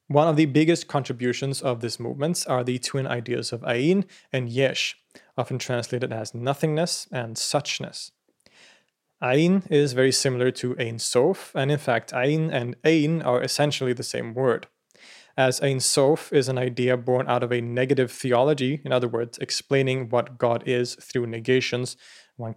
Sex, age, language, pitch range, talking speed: male, 30-49, English, 120-140 Hz, 165 wpm